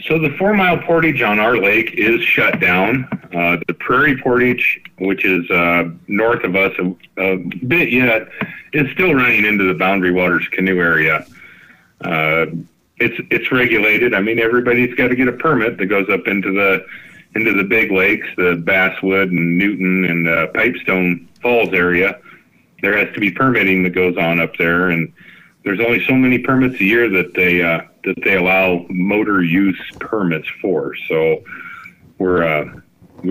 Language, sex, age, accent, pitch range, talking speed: English, male, 40-59, American, 90-115 Hz, 170 wpm